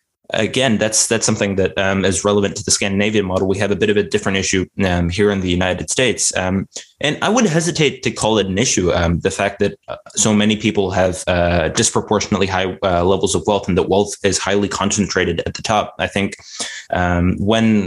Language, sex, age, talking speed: English, male, 20-39, 215 wpm